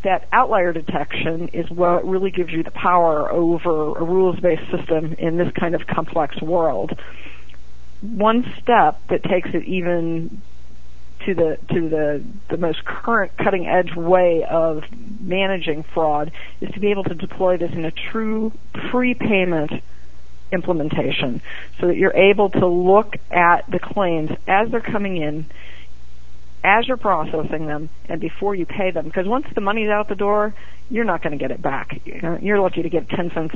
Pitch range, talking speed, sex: 160-195 Hz, 165 wpm, female